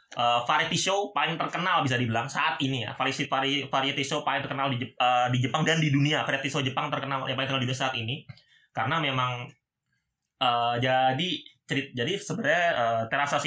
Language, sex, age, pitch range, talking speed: Indonesian, male, 20-39, 120-145 Hz, 185 wpm